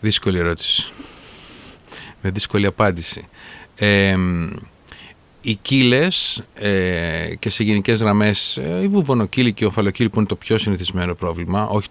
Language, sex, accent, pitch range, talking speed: Greek, male, native, 100-135 Hz, 125 wpm